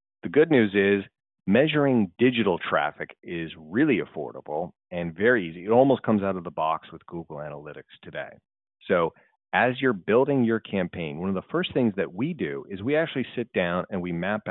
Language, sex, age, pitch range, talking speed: English, male, 30-49, 85-120 Hz, 190 wpm